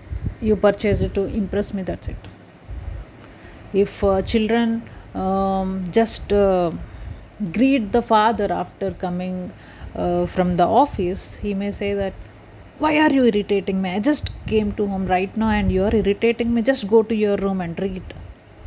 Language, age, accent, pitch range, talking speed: Hindi, 30-49, native, 185-230 Hz, 165 wpm